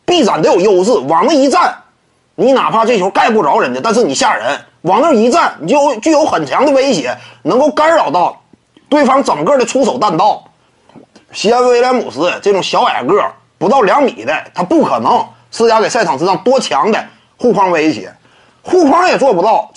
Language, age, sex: Chinese, 30-49, male